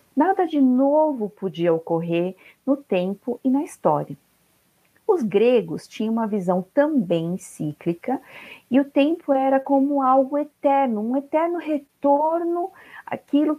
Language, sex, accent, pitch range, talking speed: Portuguese, female, Brazilian, 185-275 Hz, 125 wpm